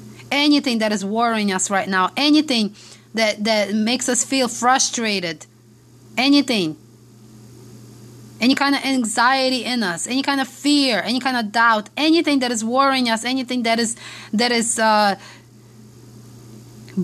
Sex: female